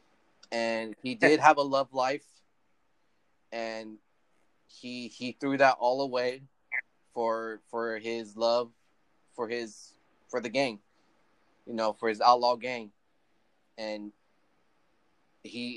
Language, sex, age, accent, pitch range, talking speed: English, male, 20-39, American, 110-125 Hz, 120 wpm